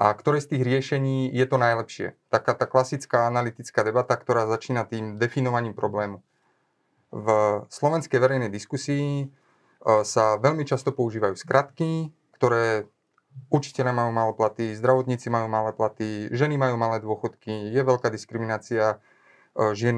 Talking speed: 130 wpm